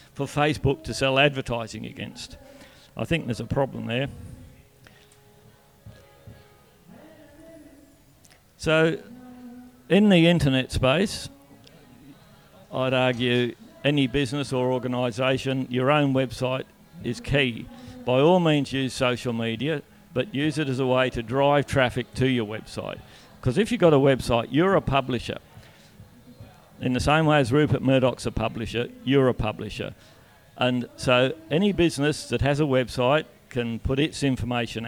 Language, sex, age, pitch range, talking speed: English, male, 50-69, 120-140 Hz, 135 wpm